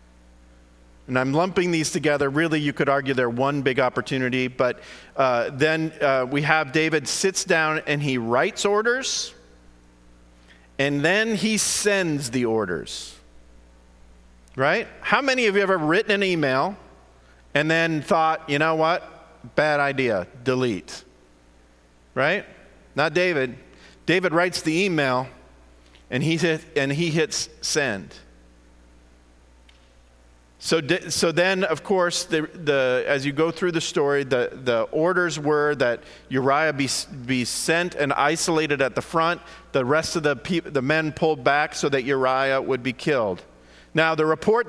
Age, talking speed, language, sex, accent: 40-59, 150 wpm, English, male, American